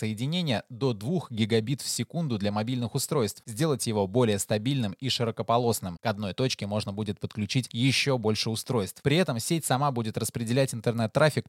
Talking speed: 160 wpm